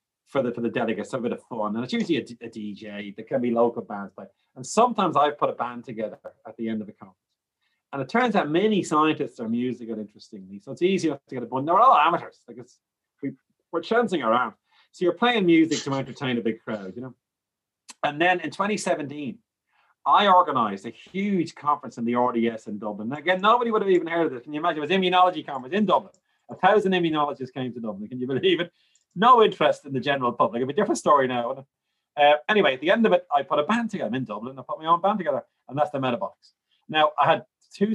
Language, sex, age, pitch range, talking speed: English, male, 30-49, 120-175 Hz, 245 wpm